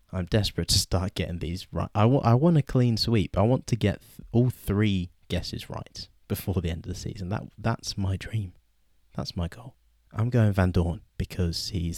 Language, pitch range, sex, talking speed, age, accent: English, 85-110 Hz, male, 210 wpm, 20-39, British